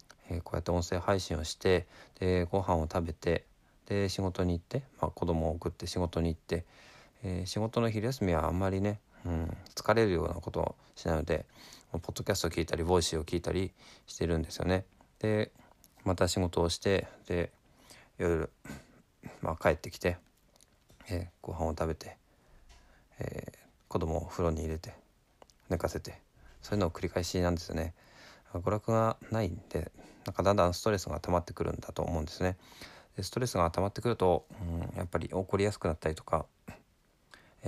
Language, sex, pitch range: Japanese, male, 85-100 Hz